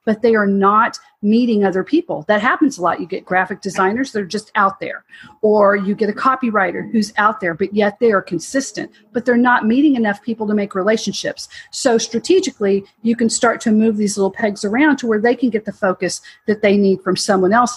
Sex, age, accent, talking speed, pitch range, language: female, 40-59, American, 225 wpm, 195-245 Hz, English